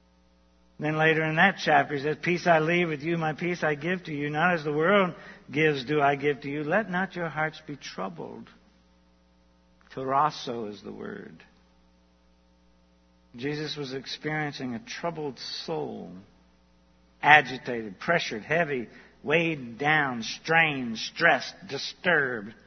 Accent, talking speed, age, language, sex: American, 140 wpm, 60-79, English, male